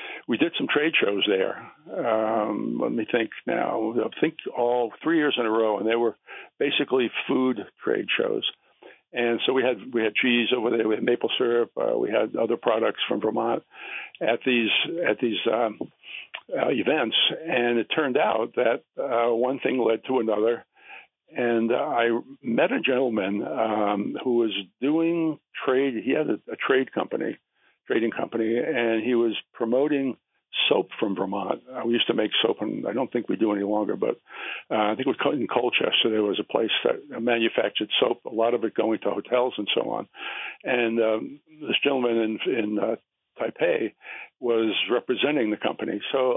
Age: 60-79